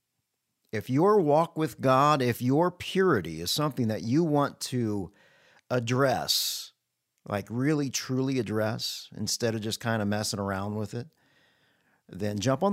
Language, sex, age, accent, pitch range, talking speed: English, male, 50-69, American, 115-155 Hz, 145 wpm